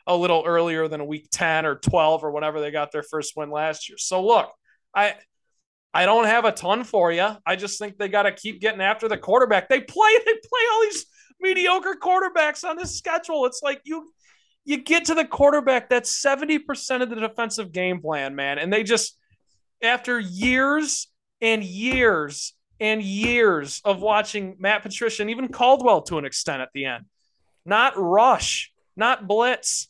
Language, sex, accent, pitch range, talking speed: English, male, American, 175-245 Hz, 185 wpm